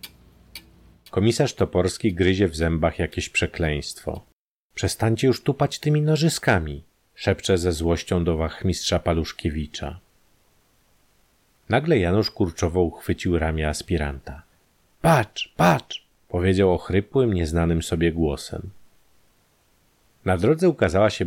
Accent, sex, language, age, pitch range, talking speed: native, male, Polish, 40-59, 85-110 Hz, 100 wpm